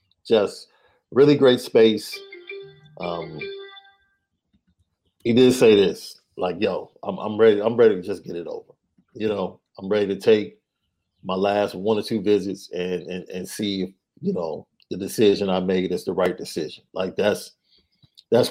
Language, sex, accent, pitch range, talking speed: English, male, American, 95-150 Hz, 165 wpm